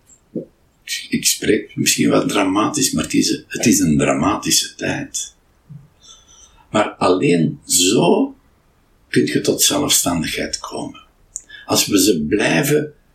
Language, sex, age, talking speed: Dutch, male, 60-79, 120 wpm